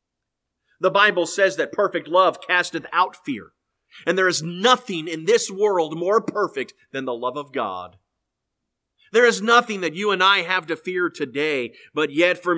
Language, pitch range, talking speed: English, 155-250 Hz, 175 wpm